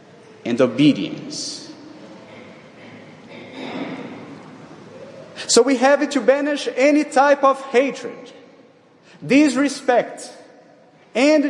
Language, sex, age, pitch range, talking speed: English, male, 40-59, 225-270 Hz, 70 wpm